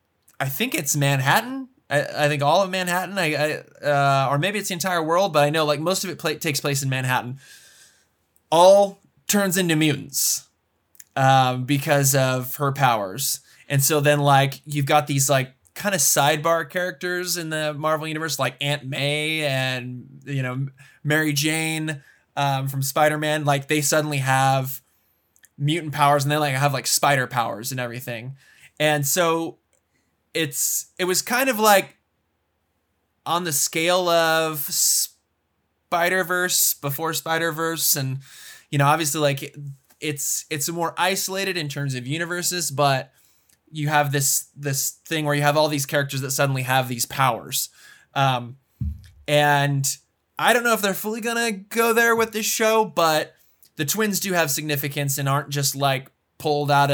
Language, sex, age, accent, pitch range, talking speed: English, male, 20-39, American, 135-165 Hz, 160 wpm